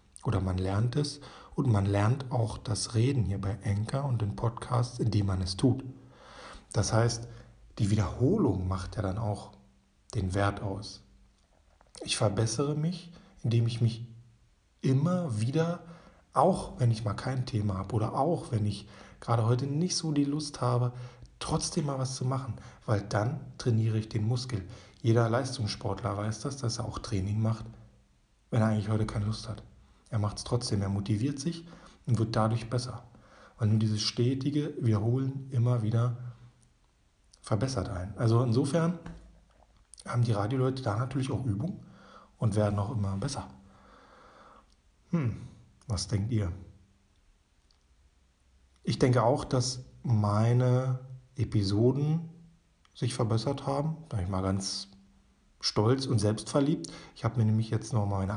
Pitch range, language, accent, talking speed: 105-130 Hz, German, German, 150 wpm